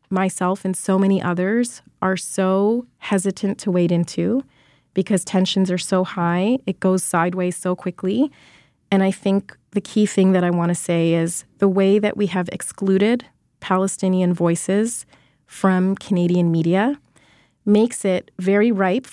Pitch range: 180-205 Hz